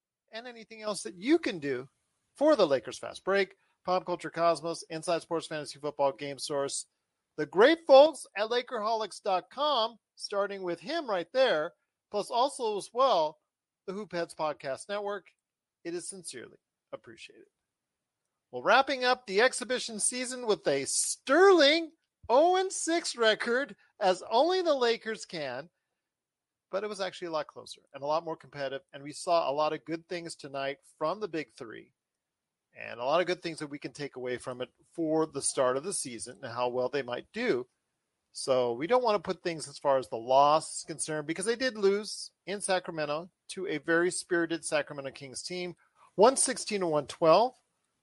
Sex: male